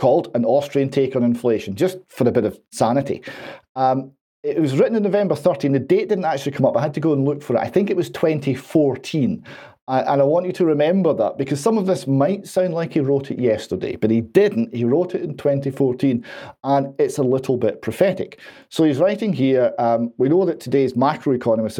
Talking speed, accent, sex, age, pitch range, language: 225 wpm, British, male, 40-59, 115-155 Hz, English